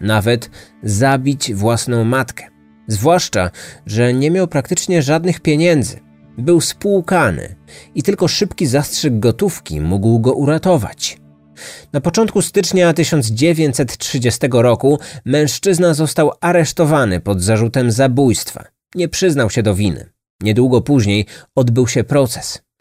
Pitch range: 105-155 Hz